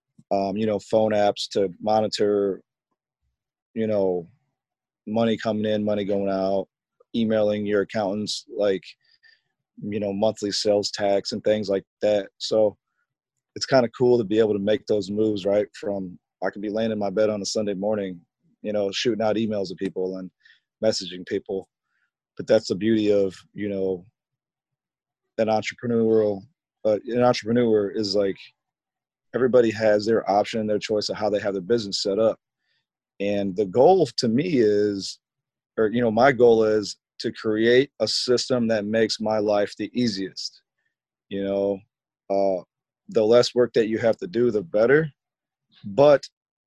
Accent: American